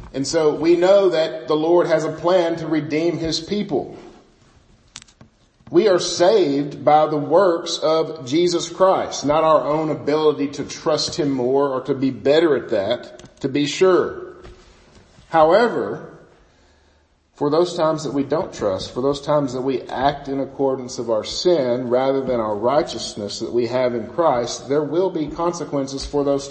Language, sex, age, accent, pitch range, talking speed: English, male, 50-69, American, 125-165 Hz, 165 wpm